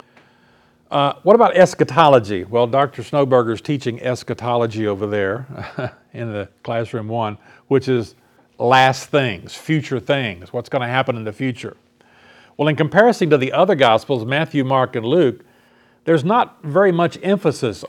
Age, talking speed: 50-69, 150 wpm